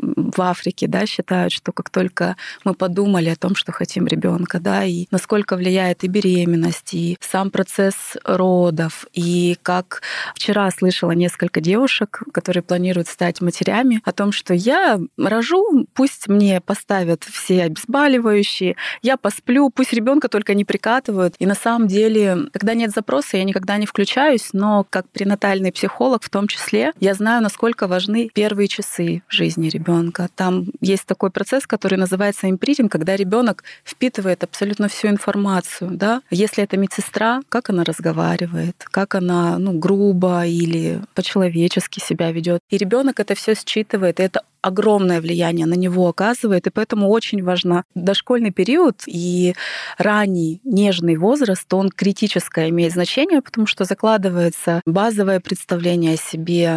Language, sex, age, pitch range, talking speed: Russian, female, 20-39, 175-210 Hz, 145 wpm